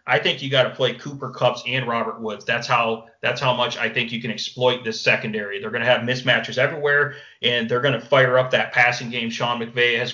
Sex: male